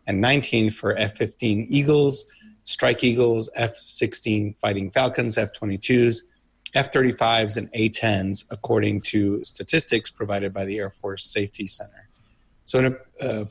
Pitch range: 100-120 Hz